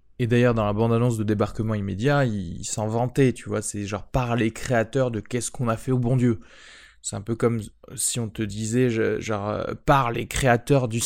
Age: 20-39